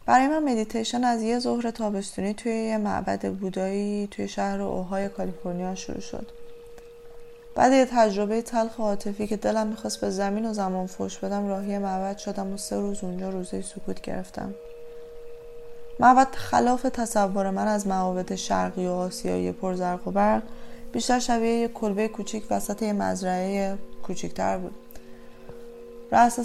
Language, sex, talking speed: Persian, female, 145 wpm